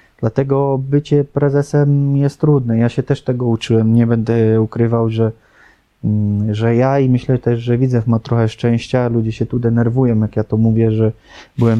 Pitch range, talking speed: 110-120 Hz, 175 wpm